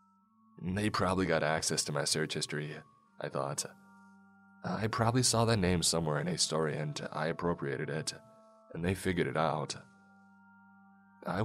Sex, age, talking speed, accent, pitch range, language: male, 20-39, 150 wpm, American, 80-130 Hz, English